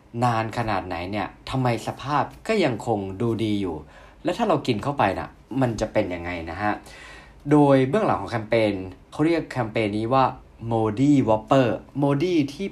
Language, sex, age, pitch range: Thai, male, 20-39, 100-130 Hz